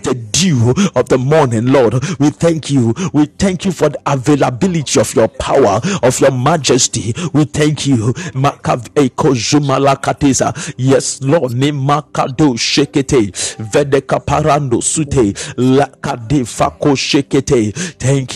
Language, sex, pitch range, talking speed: English, male, 135-150 Hz, 90 wpm